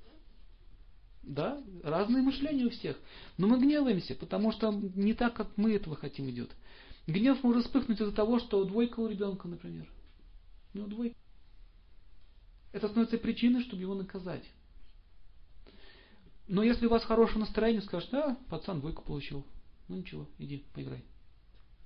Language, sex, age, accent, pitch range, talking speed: Russian, male, 40-59, native, 120-205 Hz, 145 wpm